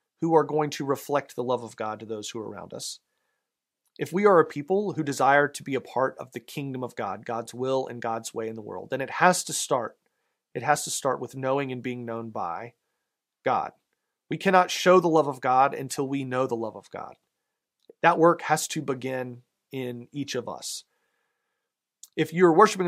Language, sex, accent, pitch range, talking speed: English, male, American, 130-170 Hz, 210 wpm